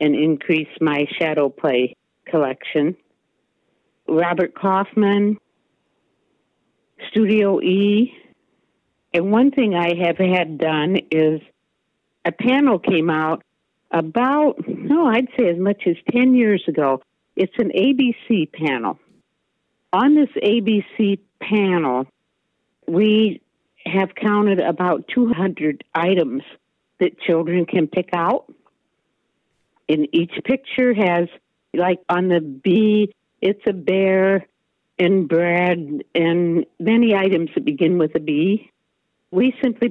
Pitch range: 165-215 Hz